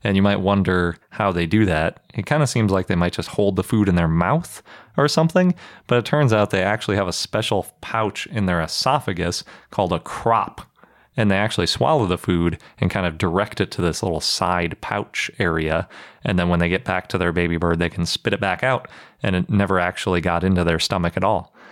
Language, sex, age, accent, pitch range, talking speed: English, male, 30-49, American, 85-105 Hz, 230 wpm